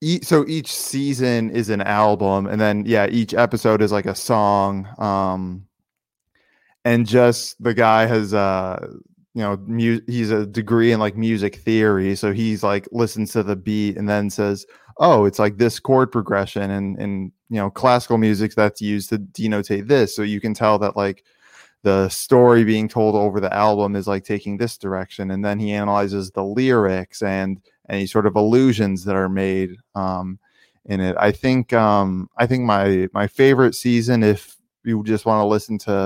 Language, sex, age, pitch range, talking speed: English, male, 20-39, 100-115 Hz, 185 wpm